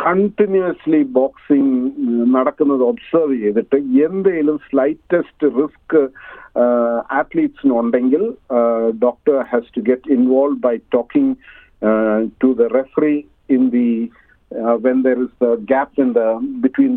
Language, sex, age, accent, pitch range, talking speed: Malayalam, male, 50-69, native, 120-150 Hz, 105 wpm